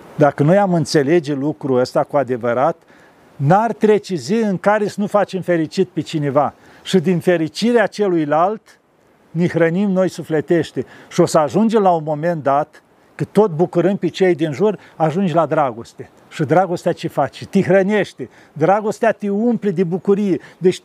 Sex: male